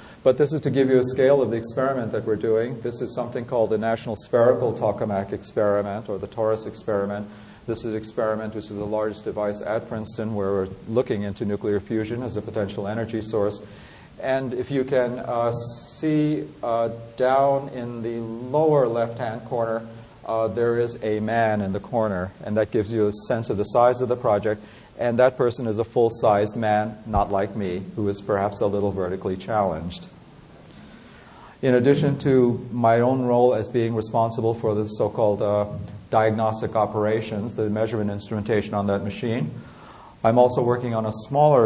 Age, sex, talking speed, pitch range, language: 40-59, male, 180 wpm, 105-120 Hz, English